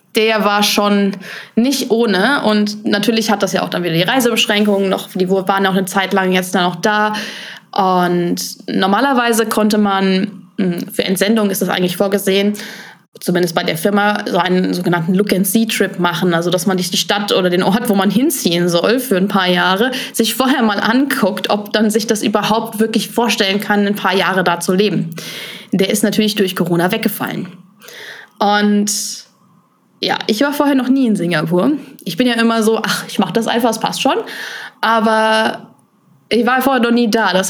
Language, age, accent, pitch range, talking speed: German, 20-39, German, 190-225 Hz, 190 wpm